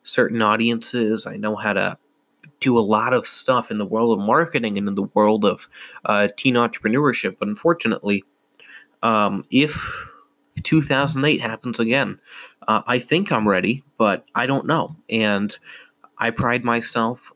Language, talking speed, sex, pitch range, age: English, 150 wpm, male, 110-135 Hz, 20-39